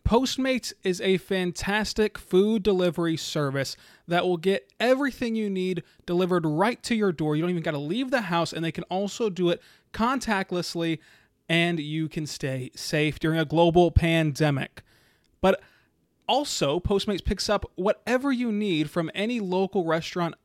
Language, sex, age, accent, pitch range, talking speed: English, male, 20-39, American, 155-200 Hz, 160 wpm